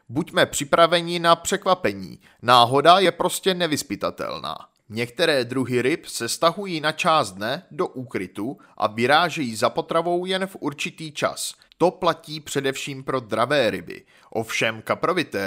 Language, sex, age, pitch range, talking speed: Czech, male, 30-49, 135-180 Hz, 130 wpm